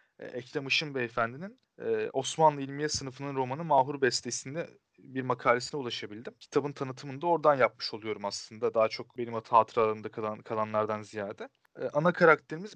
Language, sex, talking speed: Turkish, male, 145 wpm